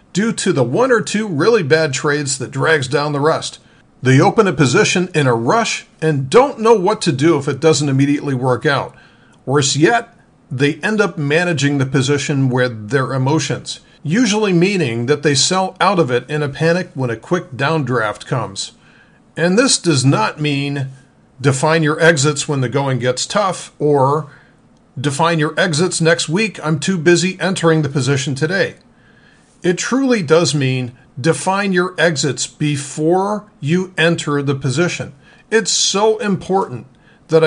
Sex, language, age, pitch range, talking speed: male, English, 50-69, 135-175 Hz, 165 wpm